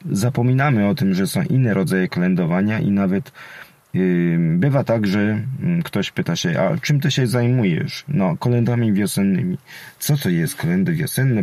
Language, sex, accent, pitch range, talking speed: Polish, male, native, 120-165 Hz, 160 wpm